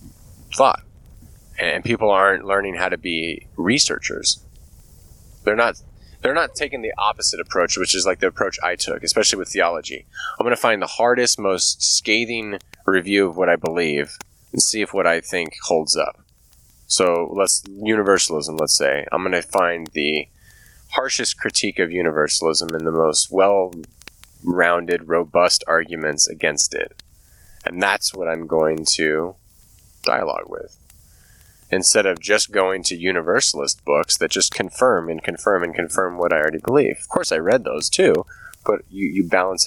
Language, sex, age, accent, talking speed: English, male, 20-39, American, 160 wpm